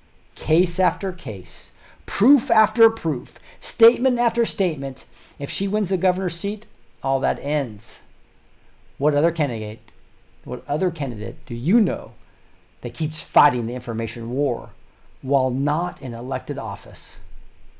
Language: English